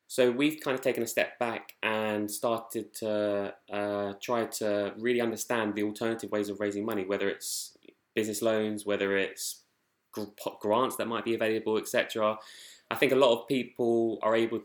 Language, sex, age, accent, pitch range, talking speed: English, male, 20-39, British, 100-115 Hz, 170 wpm